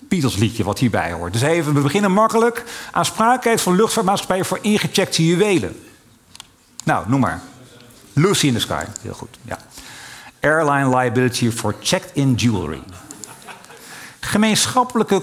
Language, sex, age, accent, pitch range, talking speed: Dutch, male, 50-69, Dutch, 120-165 Hz, 125 wpm